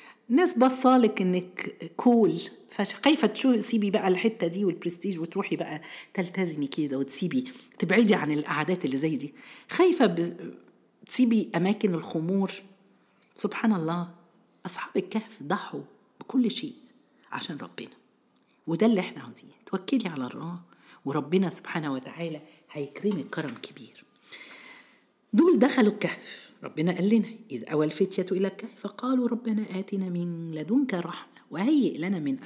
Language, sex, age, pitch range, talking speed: Arabic, female, 50-69, 170-240 Hz, 130 wpm